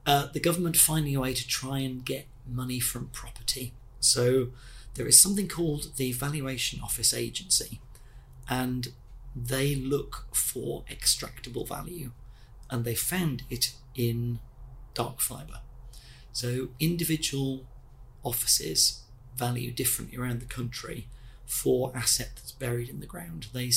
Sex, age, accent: male, 40-59, British